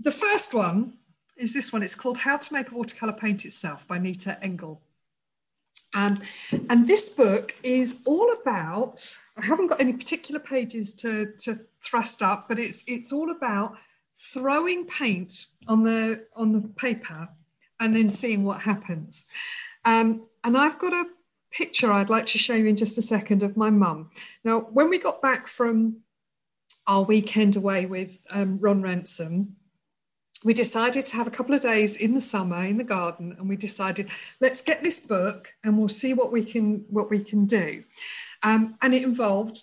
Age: 50-69